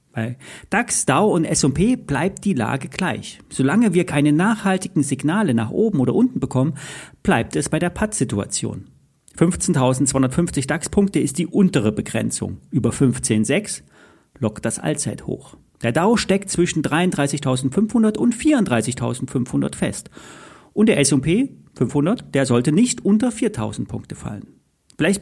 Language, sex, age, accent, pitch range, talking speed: German, male, 40-59, German, 130-195 Hz, 130 wpm